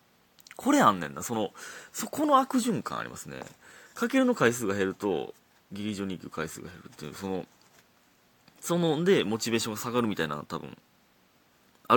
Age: 30-49